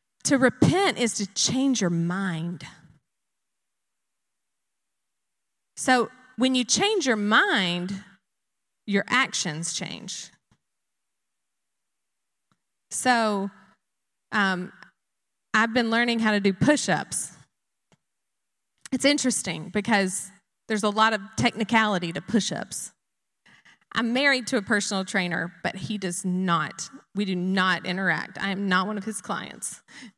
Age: 20-39